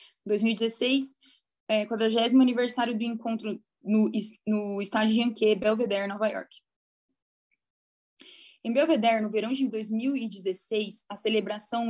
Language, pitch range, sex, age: Portuguese, 210-245 Hz, female, 10-29